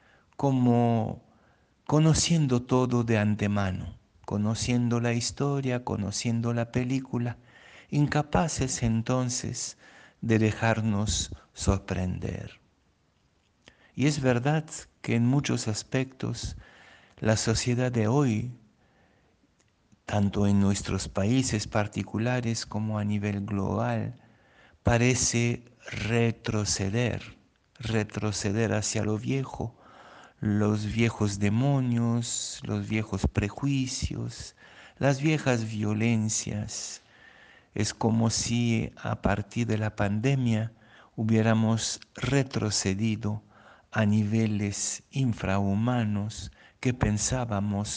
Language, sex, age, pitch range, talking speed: Spanish, male, 60-79, 105-120 Hz, 85 wpm